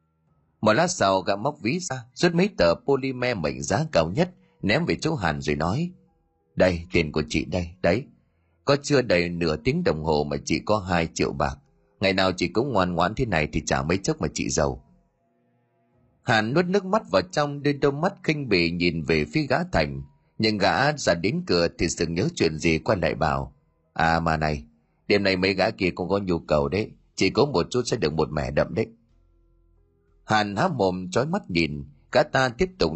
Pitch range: 80-125 Hz